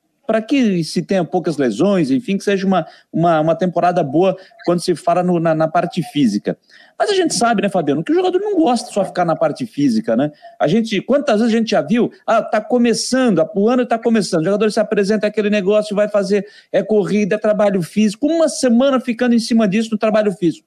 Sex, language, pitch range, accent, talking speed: male, Portuguese, 195-235 Hz, Brazilian, 220 wpm